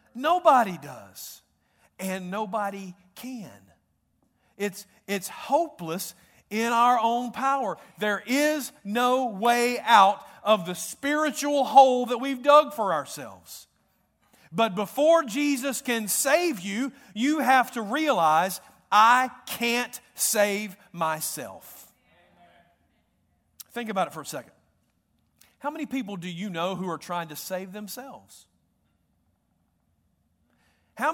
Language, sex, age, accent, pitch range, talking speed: English, male, 50-69, American, 195-270 Hz, 115 wpm